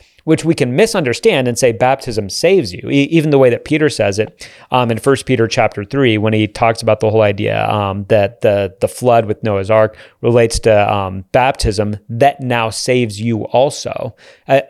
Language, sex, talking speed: English, male, 195 wpm